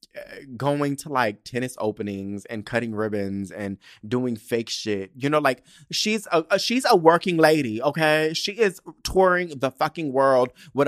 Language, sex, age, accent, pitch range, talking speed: English, male, 30-49, American, 110-155 Hz, 155 wpm